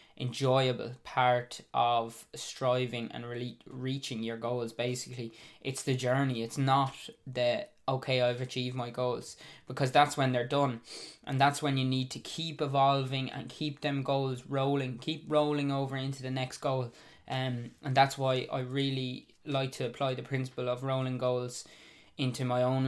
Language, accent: English, Irish